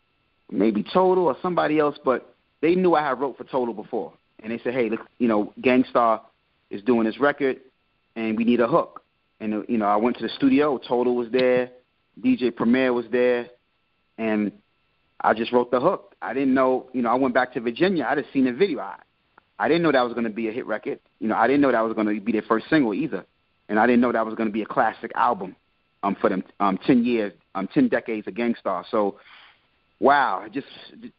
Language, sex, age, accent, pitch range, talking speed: English, male, 30-49, American, 110-130 Hz, 230 wpm